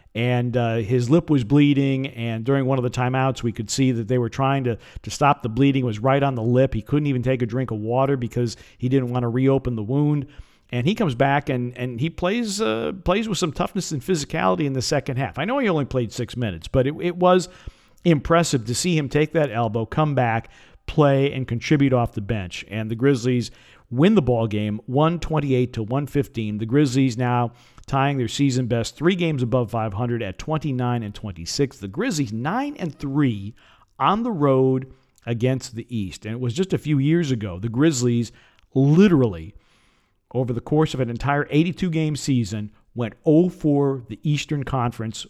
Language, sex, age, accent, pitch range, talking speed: English, male, 50-69, American, 115-145 Hz, 195 wpm